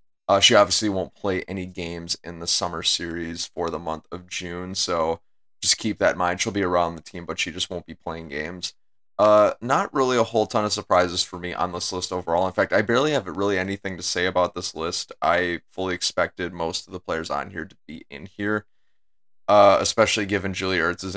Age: 30-49